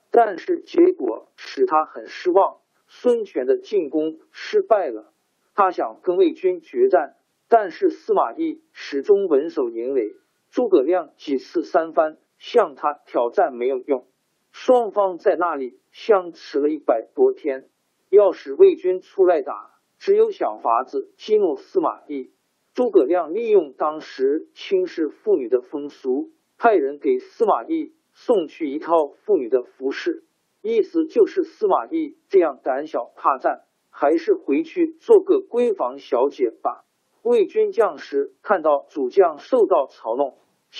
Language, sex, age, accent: Chinese, male, 50-69, native